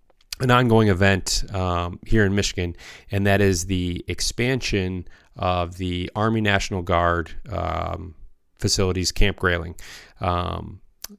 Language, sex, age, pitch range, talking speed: English, male, 20-39, 90-100 Hz, 120 wpm